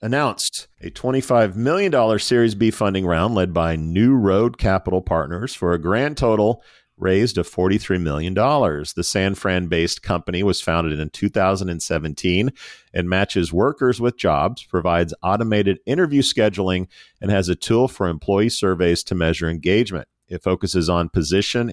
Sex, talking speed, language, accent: male, 145 wpm, English, American